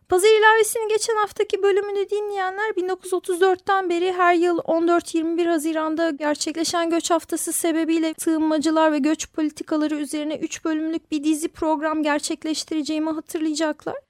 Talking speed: 120 wpm